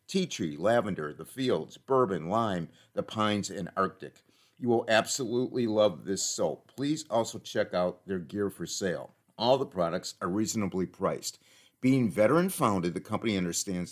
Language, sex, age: English, male, 50-69